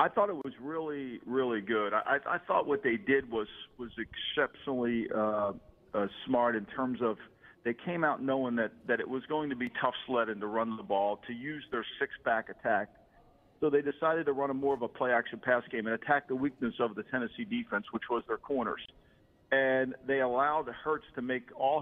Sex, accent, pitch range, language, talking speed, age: male, American, 120-150 Hz, English, 210 wpm, 50-69